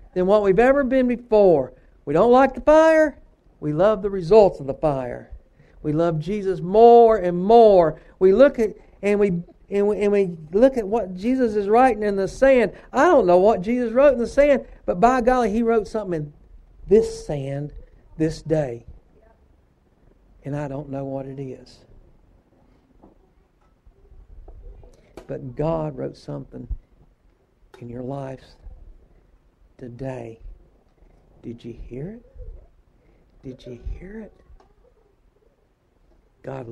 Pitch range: 125-205 Hz